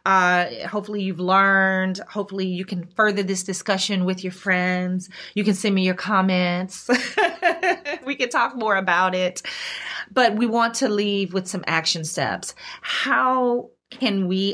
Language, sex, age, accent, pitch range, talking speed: English, female, 30-49, American, 185-225 Hz, 155 wpm